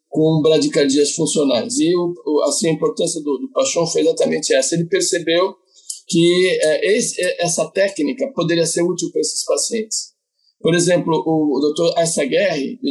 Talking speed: 165 wpm